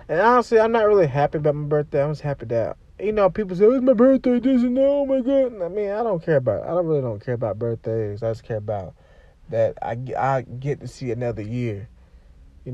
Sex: male